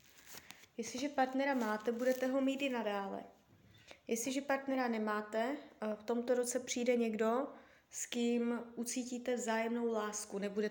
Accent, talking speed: native, 125 wpm